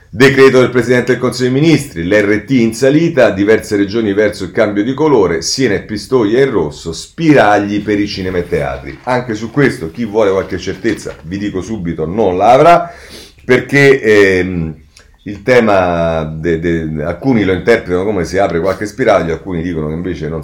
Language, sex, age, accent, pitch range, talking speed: Italian, male, 40-59, native, 80-120 Hz, 165 wpm